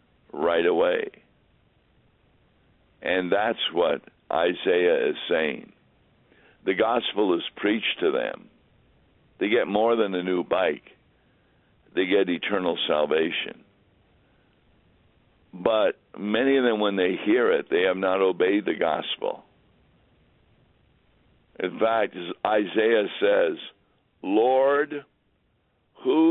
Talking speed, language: 105 wpm, English